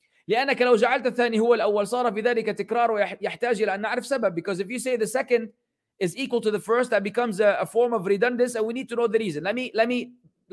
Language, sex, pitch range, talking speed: English, male, 195-245 Hz, 165 wpm